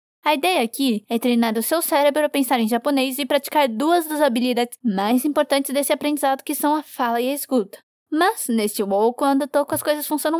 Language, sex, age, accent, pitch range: Japanese, female, 10-29, Brazilian, 250-305 Hz